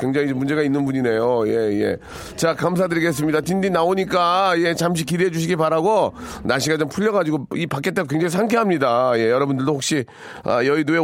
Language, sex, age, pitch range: Korean, male, 40-59, 130-170 Hz